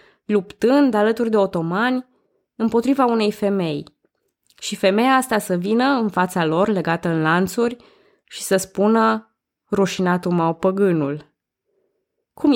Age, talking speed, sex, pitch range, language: 20-39, 120 wpm, female, 165-210 Hz, Romanian